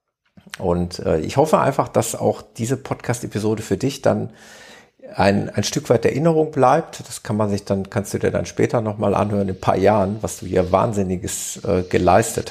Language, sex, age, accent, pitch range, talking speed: German, male, 50-69, German, 95-115 Hz, 190 wpm